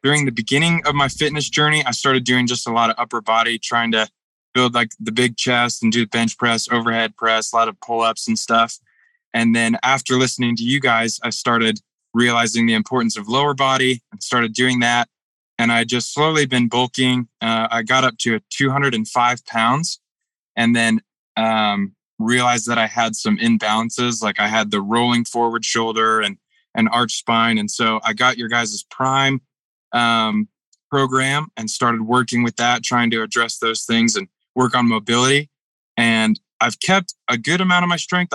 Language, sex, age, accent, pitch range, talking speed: English, male, 20-39, American, 115-135 Hz, 185 wpm